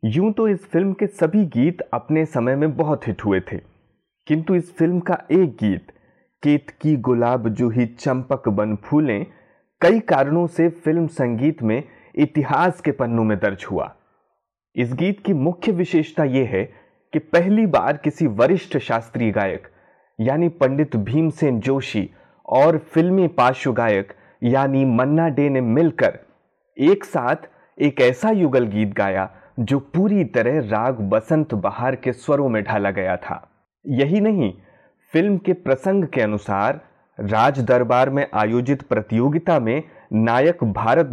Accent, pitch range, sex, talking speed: native, 115-165 Hz, male, 145 wpm